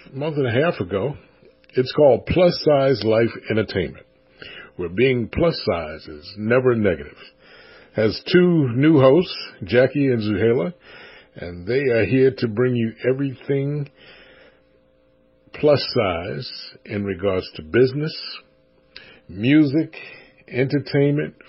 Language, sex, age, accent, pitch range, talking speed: English, male, 60-79, American, 110-140 Hz, 115 wpm